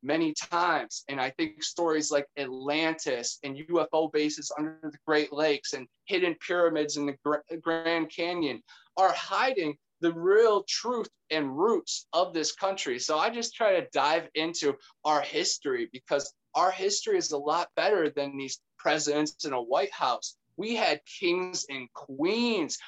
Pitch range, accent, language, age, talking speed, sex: 145-195 Hz, American, English, 20-39, 155 wpm, male